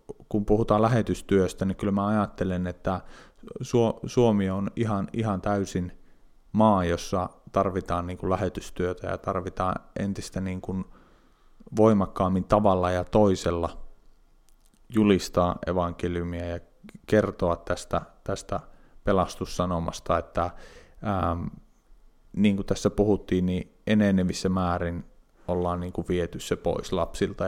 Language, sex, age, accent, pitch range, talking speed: Finnish, male, 30-49, native, 90-105 Hz, 110 wpm